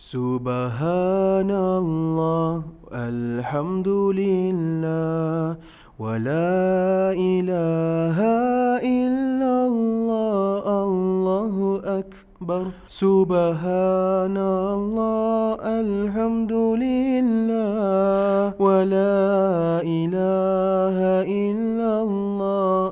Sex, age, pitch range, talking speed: male, 20-39, 165-200 Hz, 35 wpm